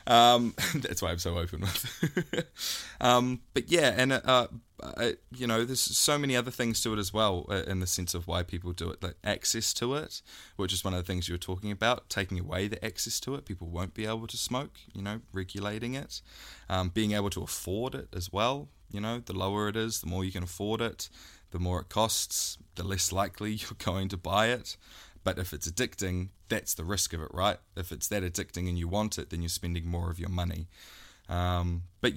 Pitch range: 90-105 Hz